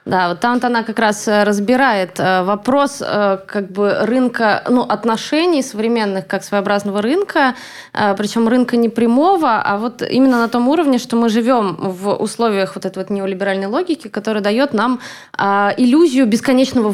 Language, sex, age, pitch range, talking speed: Russian, female, 20-39, 190-235 Hz, 150 wpm